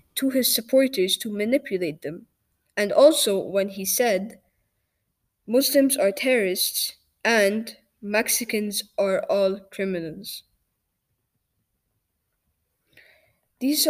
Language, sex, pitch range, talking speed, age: English, female, 190-245 Hz, 85 wpm, 10-29